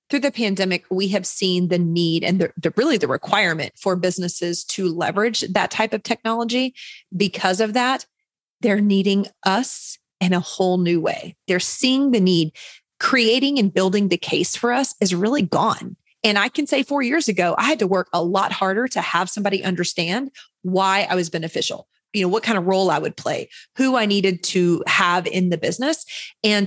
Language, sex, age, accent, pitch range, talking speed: English, female, 30-49, American, 180-235 Hz, 195 wpm